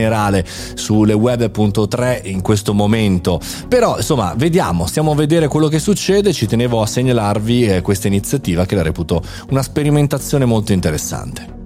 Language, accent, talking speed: Italian, native, 150 wpm